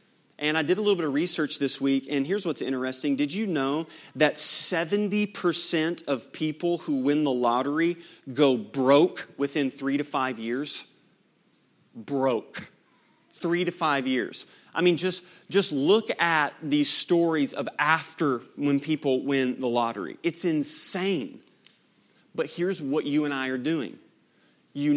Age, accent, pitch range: 30-49, American, 145-180 Hz